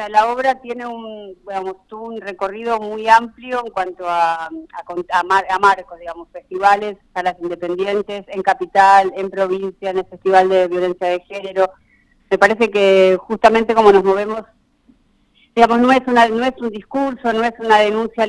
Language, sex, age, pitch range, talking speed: Spanish, female, 30-49, 180-225 Hz, 160 wpm